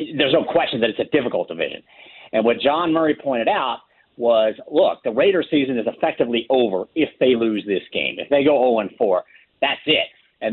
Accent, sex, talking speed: American, male, 195 wpm